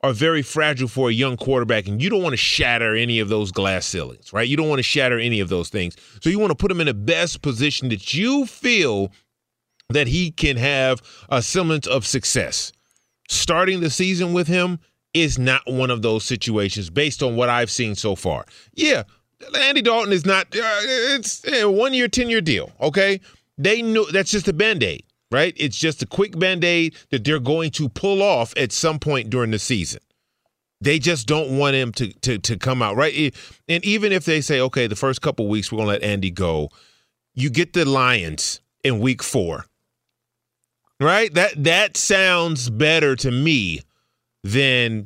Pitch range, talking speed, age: 115-165 Hz, 195 wpm, 30-49